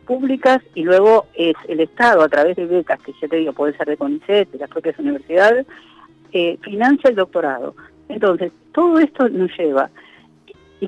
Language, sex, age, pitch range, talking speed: Spanish, female, 50-69, 150-245 Hz, 175 wpm